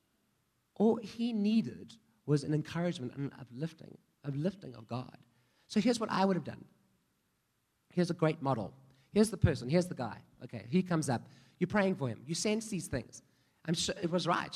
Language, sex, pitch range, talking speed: English, male, 145-190 Hz, 190 wpm